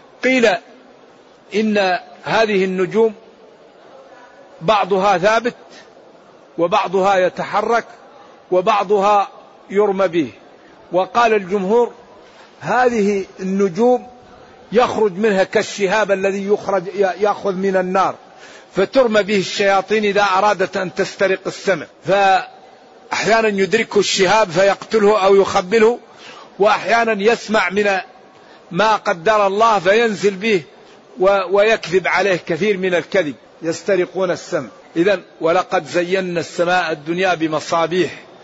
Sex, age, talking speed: male, 50-69, 90 wpm